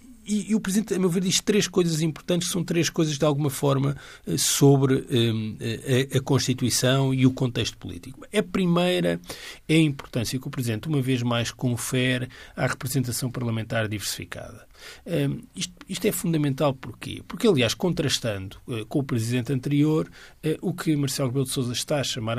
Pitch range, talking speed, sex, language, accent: 120-160 Hz, 175 wpm, male, Portuguese, Brazilian